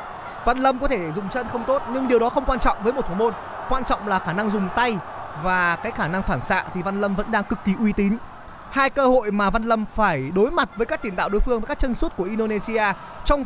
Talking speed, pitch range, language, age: 275 wpm, 195-240 Hz, Vietnamese, 20-39